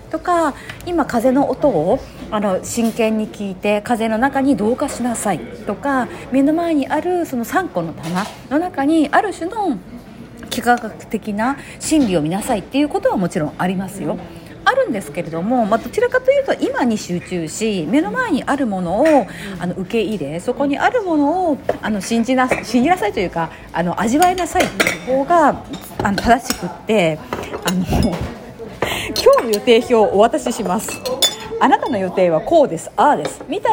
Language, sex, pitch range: Japanese, female, 205-310 Hz